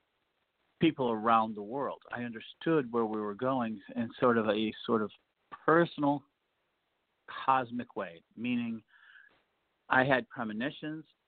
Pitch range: 105-130 Hz